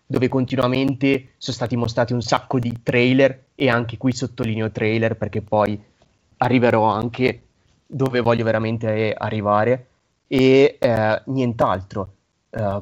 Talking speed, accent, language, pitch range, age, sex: 120 wpm, native, Italian, 110-140 Hz, 30-49, male